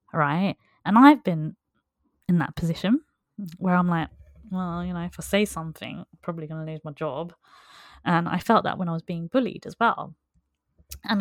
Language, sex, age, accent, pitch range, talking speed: English, female, 20-39, British, 170-215 Hz, 195 wpm